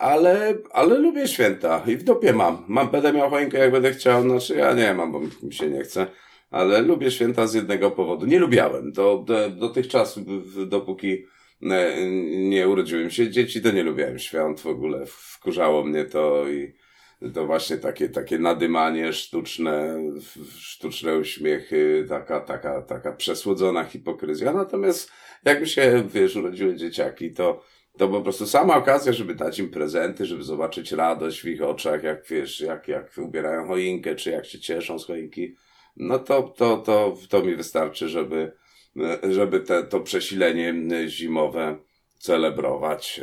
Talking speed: 155 wpm